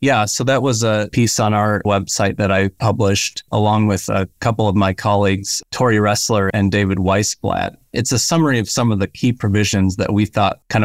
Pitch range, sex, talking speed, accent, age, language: 95-115 Hz, male, 205 wpm, American, 30-49, English